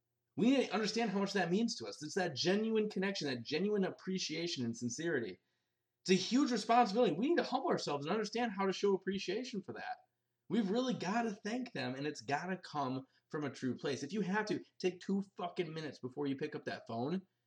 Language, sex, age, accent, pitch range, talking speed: English, male, 20-39, American, 125-195 Hz, 225 wpm